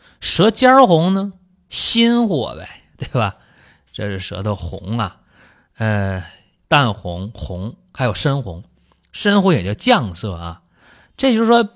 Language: Chinese